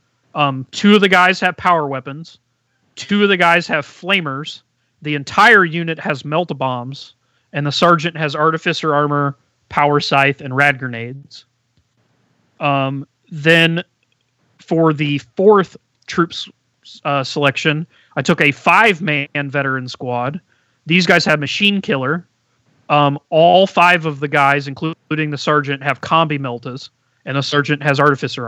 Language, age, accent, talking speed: English, 30-49, American, 145 wpm